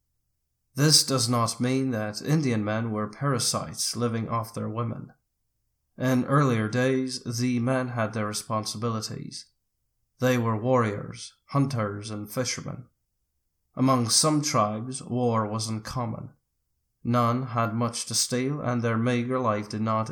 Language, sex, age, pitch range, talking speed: English, male, 30-49, 110-130 Hz, 130 wpm